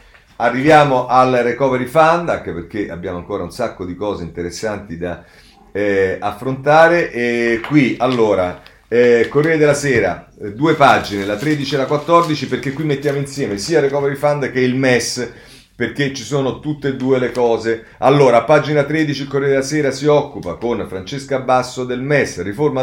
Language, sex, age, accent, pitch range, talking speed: Italian, male, 40-59, native, 105-140 Hz, 170 wpm